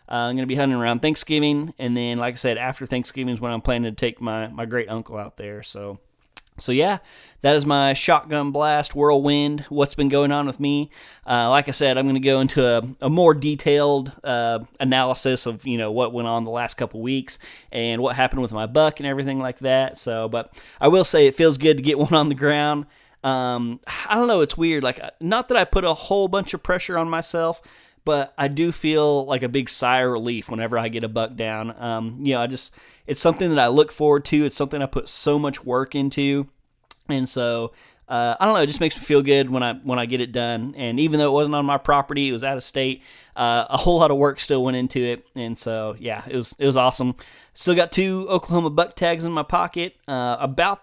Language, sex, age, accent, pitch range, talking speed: English, male, 20-39, American, 120-150 Hz, 240 wpm